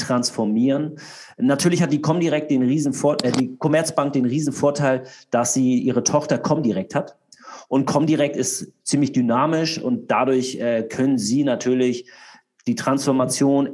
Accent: German